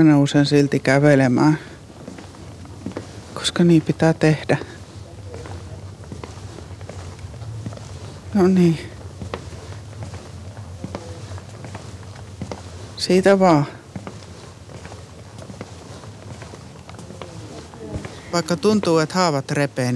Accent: native